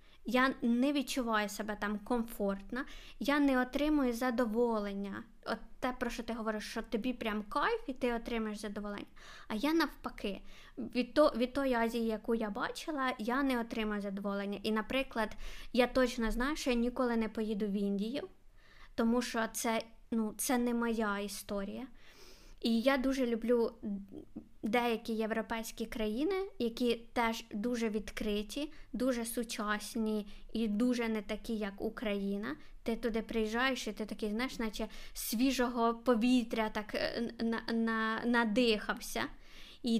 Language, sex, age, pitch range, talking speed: Ukrainian, female, 20-39, 220-250 Hz, 135 wpm